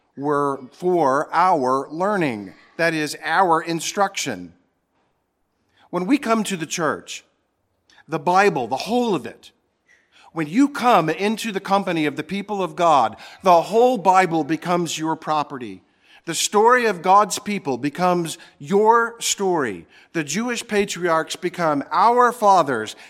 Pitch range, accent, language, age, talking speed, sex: 155-200 Hz, American, English, 50-69, 130 wpm, male